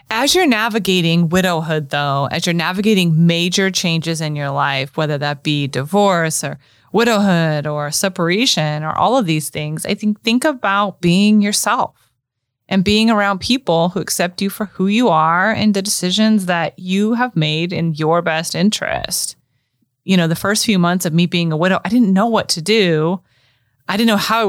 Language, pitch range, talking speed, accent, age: English, 160-215 Hz, 185 wpm, American, 30-49